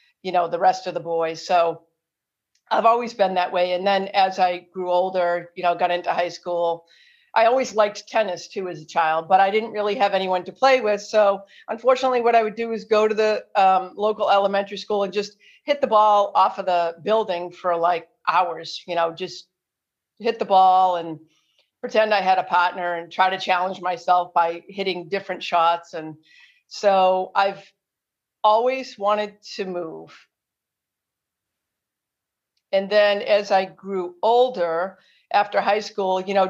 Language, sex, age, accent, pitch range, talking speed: English, female, 50-69, American, 175-210 Hz, 175 wpm